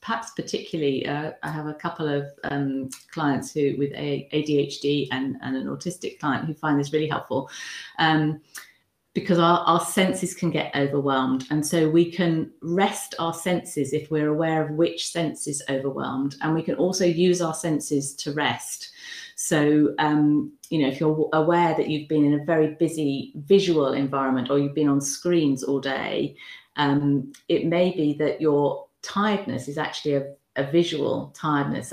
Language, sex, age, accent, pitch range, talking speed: English, female, 40-59, British, 140-160 Hz, 170 wpm